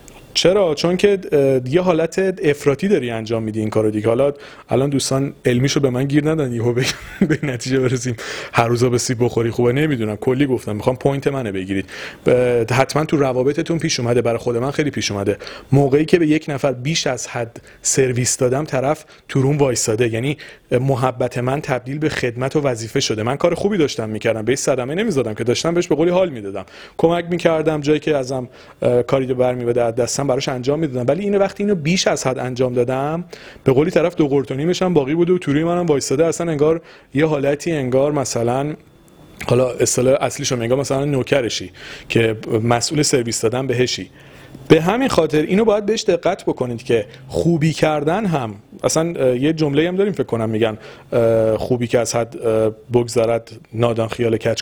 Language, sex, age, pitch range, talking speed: Persian, male, 30-49, 120-155 Hz, 170 wpm